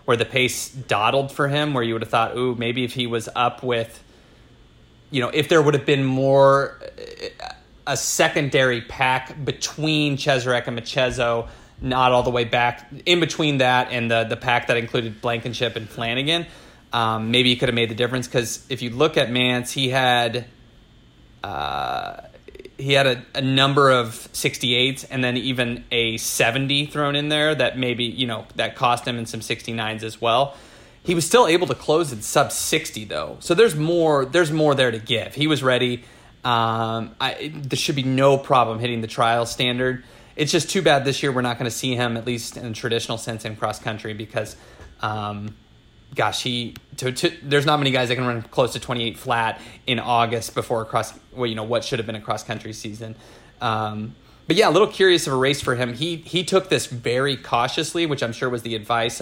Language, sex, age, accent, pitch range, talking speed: English, male, 30-49, American, 115-140 Hz, 200 wpm